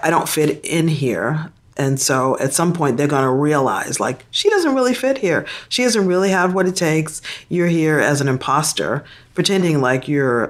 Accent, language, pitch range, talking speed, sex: American, English, 130-165 Hz, 200 wpm, female